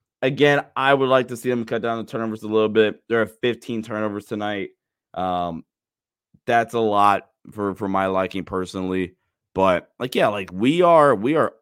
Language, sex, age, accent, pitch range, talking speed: English, male, 20-39, American, 100-120 Hz, 185 wpm